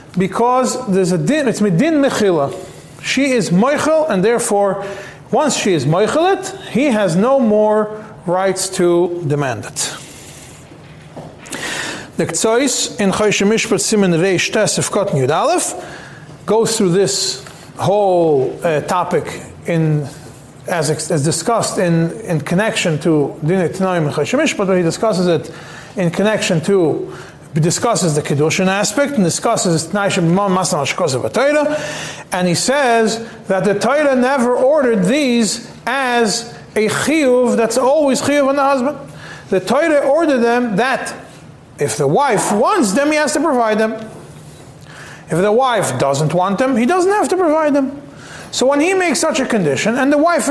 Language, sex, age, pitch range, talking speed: English, male, 40-59, 170-255 Hz, 135 wpm